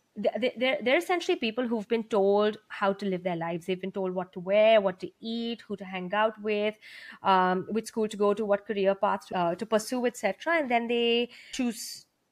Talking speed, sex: 210 wpm, female